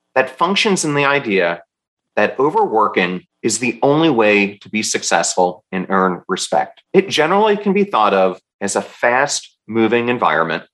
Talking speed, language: 150 wpm, English